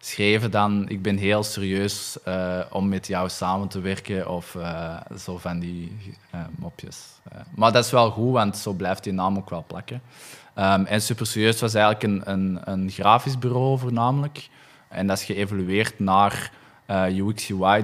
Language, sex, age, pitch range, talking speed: Dutch, male, 20-39, 95-110 Hz, 175 wpm